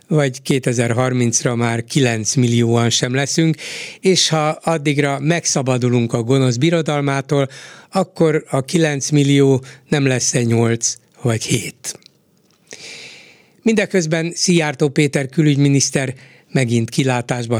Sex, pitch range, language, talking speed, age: male, 125-160 Hz, Hungarian, 100 wpm, 60-79